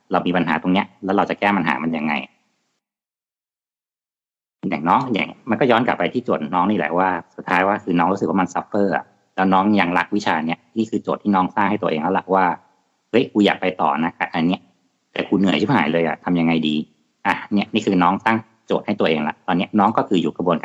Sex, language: male, Thai